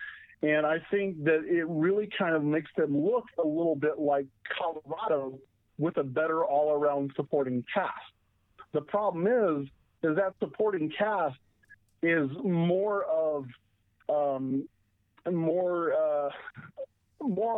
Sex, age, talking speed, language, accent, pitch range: male, 50-69, 125 wpm, English, American, 135-180 Hz